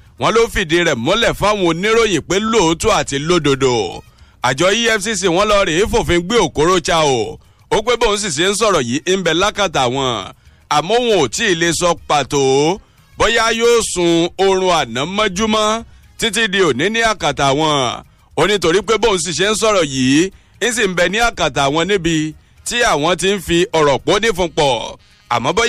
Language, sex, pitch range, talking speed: English, male, 155-215 Hz, 155 wpm